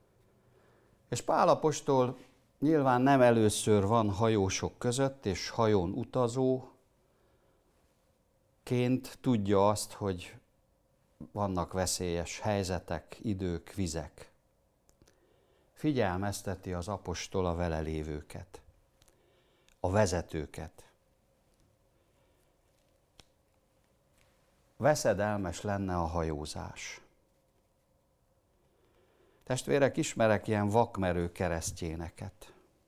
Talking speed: 70 wpm